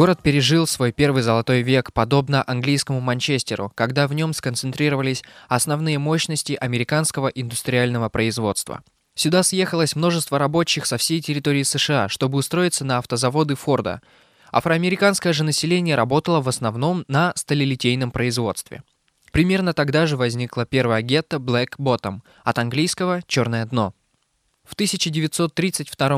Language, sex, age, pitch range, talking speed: Russian, male, 20-39, 125-160 Hz, 125 wpm